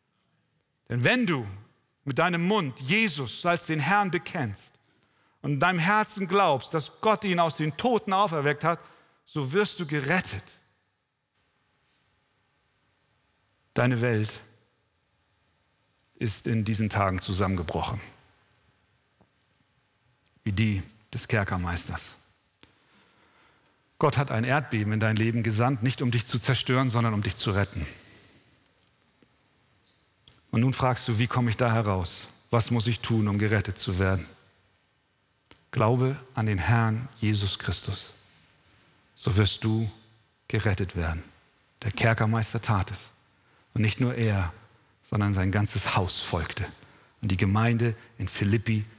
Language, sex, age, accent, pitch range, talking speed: German, male, 50-69, German, 100-130 Hz, 125 wpm